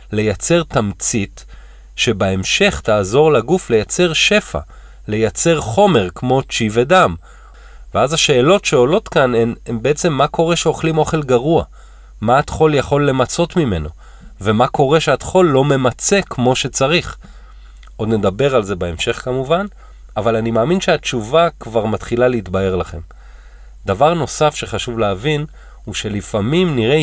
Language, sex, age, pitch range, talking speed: Hebrew, male, 40-59, 100-155 Hz, 125 wpm